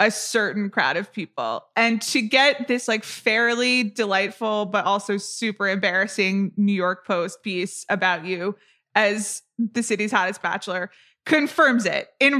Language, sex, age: English, female, 20-39